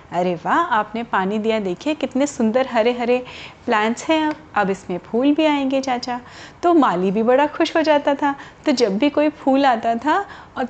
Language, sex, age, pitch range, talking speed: Hindi, female, 30-49, 225-290 Hz, 190 wpm